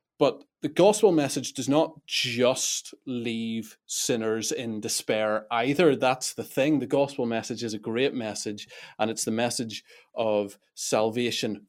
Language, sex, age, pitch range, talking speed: English, male, 30-49, 105-130 Hz, 145 wpm